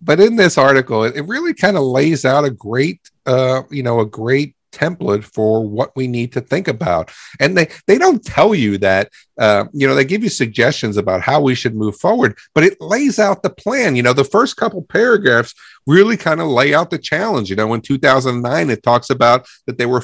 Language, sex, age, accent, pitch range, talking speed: English, male, 50-69, American, 120-160 Hz, 220 wpm